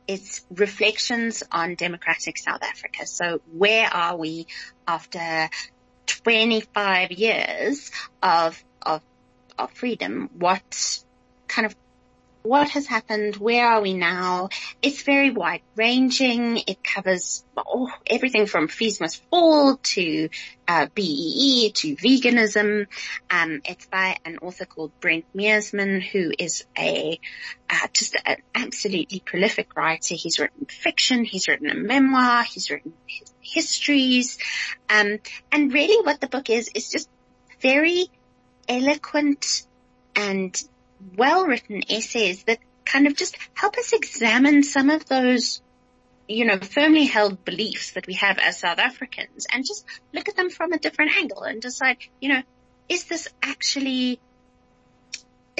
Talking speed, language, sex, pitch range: 135 wpm, English, female, 185-275 Hz